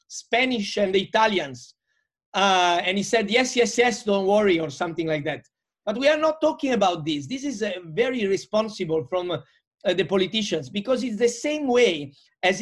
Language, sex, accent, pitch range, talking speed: Danish, male, Italian, 185-240 Hz, 185 wpm